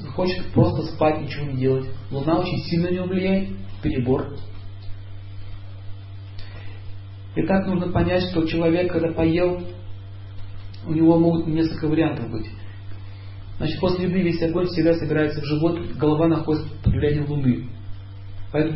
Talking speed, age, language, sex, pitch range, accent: 135 wpm, 40-59, Russian, male, 100-160 Hz, native